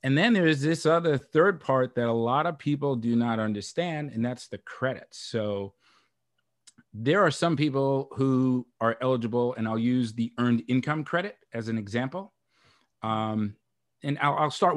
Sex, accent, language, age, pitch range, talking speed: male, American, English, 40-59, 115-150 Hz, 175 wpm